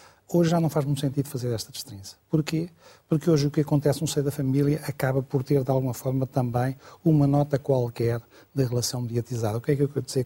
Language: Portuguese